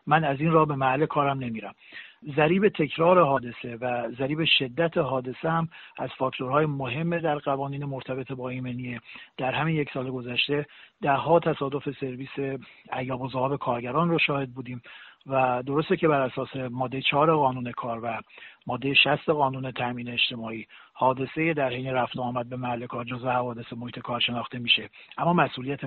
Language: Persian